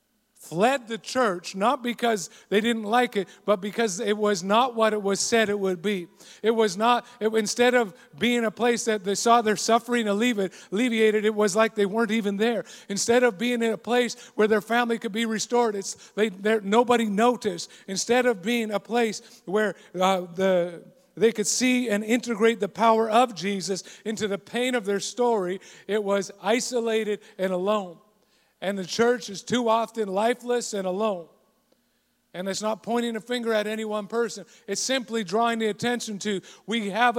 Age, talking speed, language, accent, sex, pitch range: 50-69, 185 wpm, English, American, male, 200-235 Hz